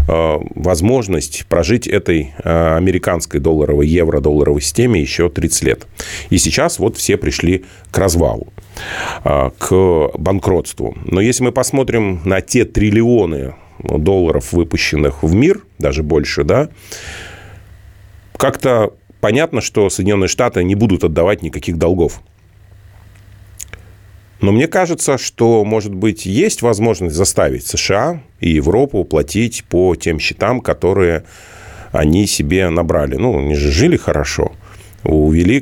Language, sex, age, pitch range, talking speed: Russian, male, 40-59, 80-100 Hz, 115 wpm